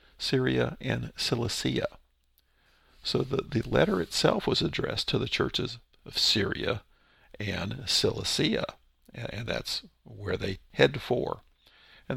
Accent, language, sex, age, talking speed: American, English, male, 50-69, 125 wpm